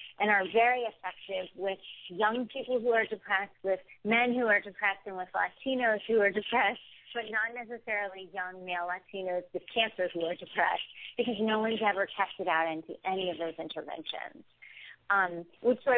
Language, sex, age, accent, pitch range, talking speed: English, female, 40-59, American, 180-225 Hz, 170 wpm